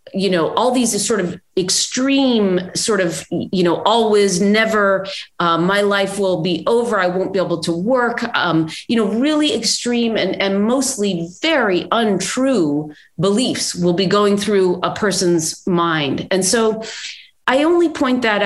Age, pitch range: 40-59, 180-225 Hz